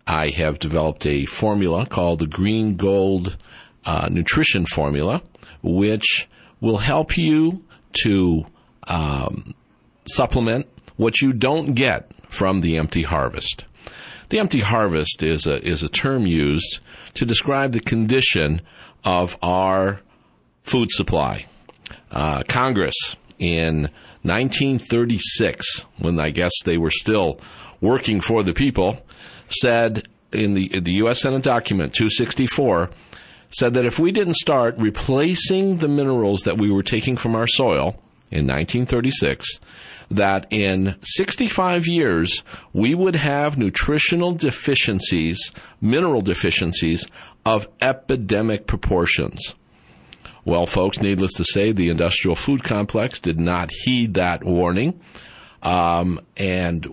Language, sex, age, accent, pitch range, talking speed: English, male, 50-69, American, 85-125 Hz, 120 wpm